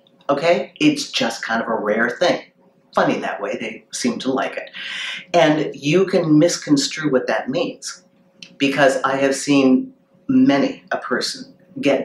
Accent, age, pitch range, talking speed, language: American, 50-69, 130-165 Hz, 155 wpm, English